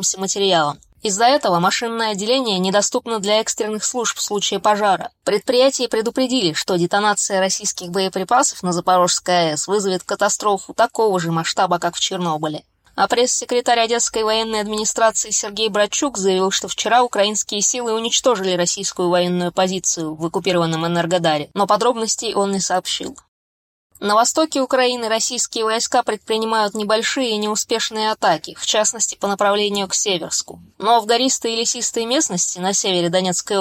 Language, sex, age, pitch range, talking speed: Russian, female, 20-39, 185-230 Hz, 140 wpm